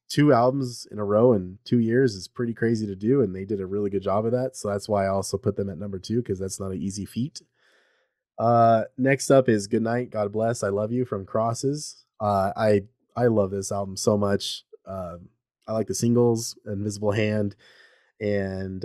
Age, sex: 30-49, male